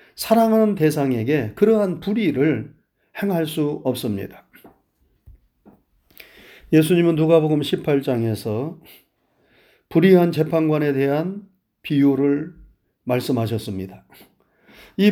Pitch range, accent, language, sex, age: 155-210 Hz, native, Korean, male, 40-59